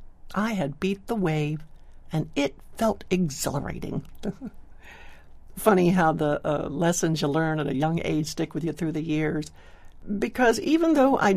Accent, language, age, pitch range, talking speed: American, English, 60-79, 145-210 Hz, 160 wpm